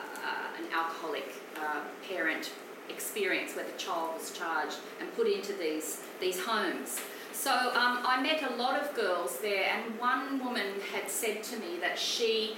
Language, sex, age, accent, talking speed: English, female, 40-59, Australian, 165 wpm